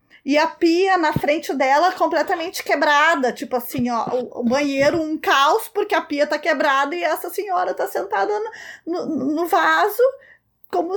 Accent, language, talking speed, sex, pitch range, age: Brazilian, Portuguese, 165 wpm, female, 250-325 Hz, 20-39